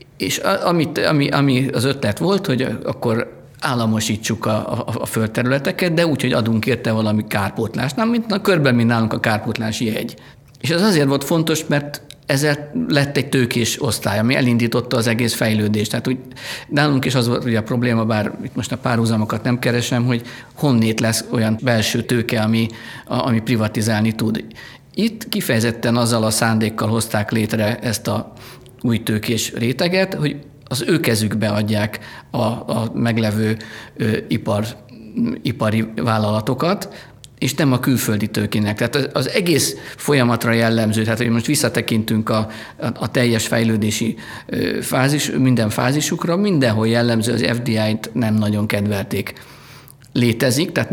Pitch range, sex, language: 110-135 Hz, male, Hungarian